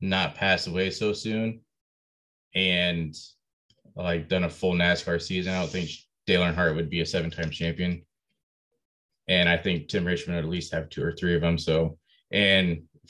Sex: male